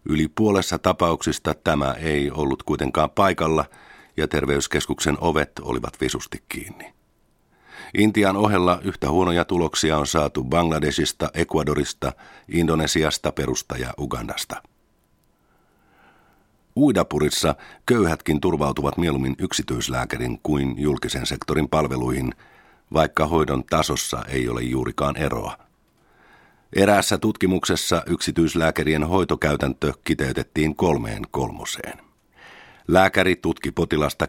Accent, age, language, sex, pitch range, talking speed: native, 50-69, Finnish, male, 70-85 Hz, 95 wpm